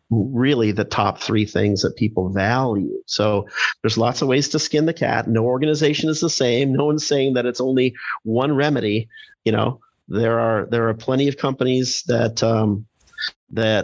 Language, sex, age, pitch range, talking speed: English, male, 40-59, 105-130 Hz, 180 wpm